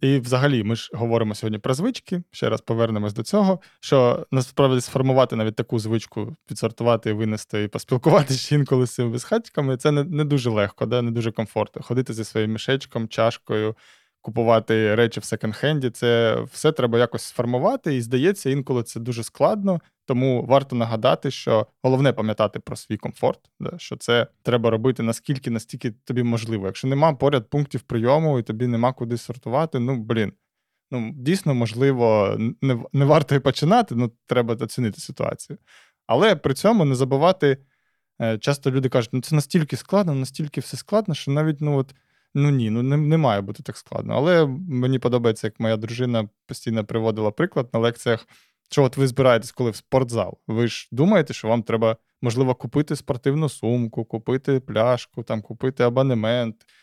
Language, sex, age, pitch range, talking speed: Ukrainian, male, 20-39, 115-140 Hz, 170 wpm